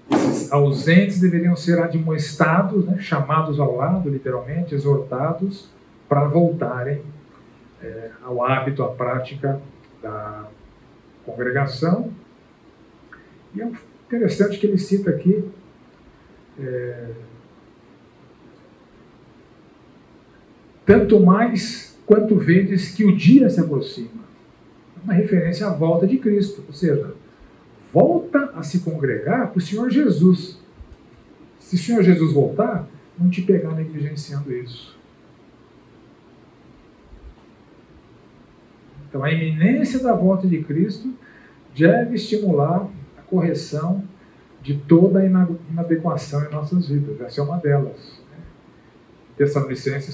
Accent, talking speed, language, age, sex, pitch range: Brazilian, 105 wpm, Portuguese, 50-69, male, 145-195 Hz